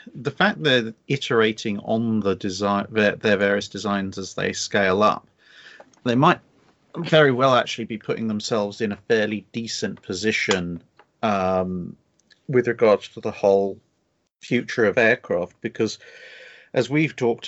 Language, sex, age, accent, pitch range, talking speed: English, male, 40-59, British, 100-120 Hz, 140 wpm